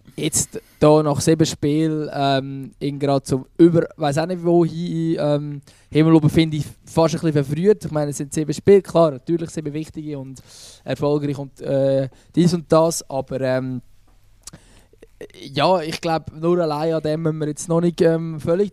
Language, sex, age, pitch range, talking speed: German, male, 20-39, 135-155 Hz, 165 wpm